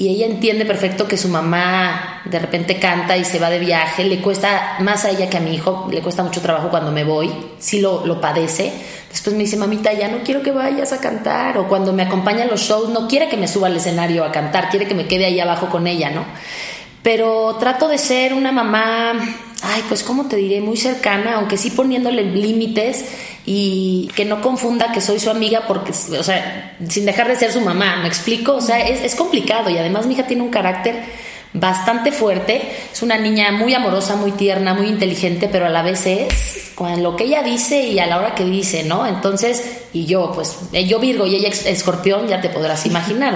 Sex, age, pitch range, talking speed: female, 30-49, 180-225 Hz, 220 wpm